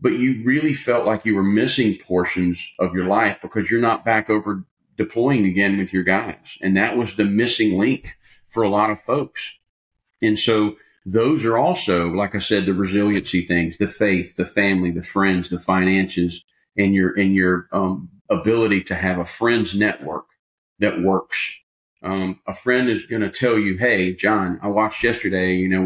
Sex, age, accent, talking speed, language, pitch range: male, 40-59, American, 185 wpm, English, 95-110 Hz